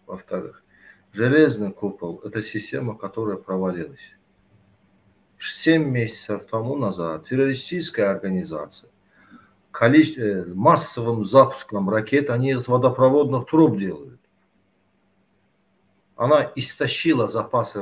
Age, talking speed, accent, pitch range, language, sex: 50-69, 85 wpm, native, 105-145 Hz, Ukrainian, male